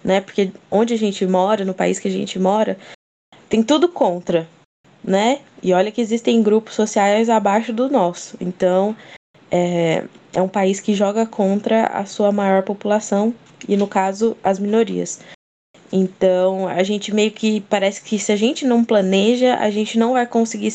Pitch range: 185-220 Hz